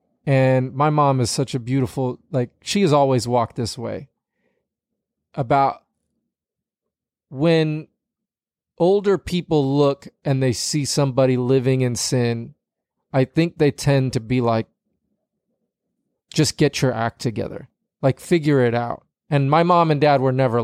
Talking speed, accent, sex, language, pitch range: 140 wpm, American, male, English, 125-150 Hz